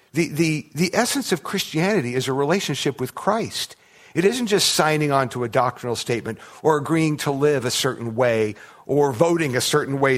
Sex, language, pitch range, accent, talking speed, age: male, English, 125-160 Hz, American, 190 wpm, 50-69